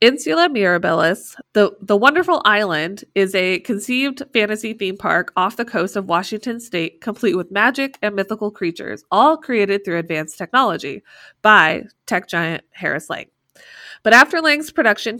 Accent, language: American, English